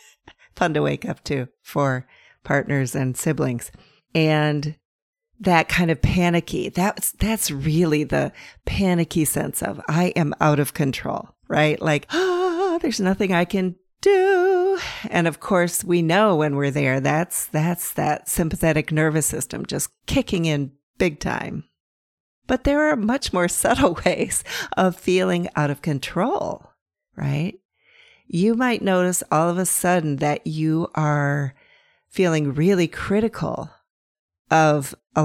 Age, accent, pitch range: 50-69, American, 150-195 Hz